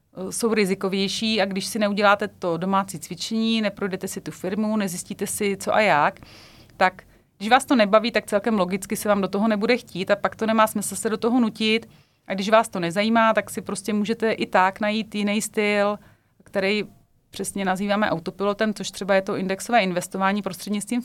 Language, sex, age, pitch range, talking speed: Czech, female, 30-49, 190-220 Hz, 190 wpm